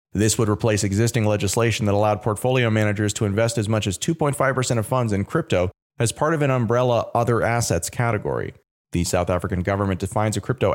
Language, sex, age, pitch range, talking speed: English, male, 30-49, 100-120 Hz, 190 wpm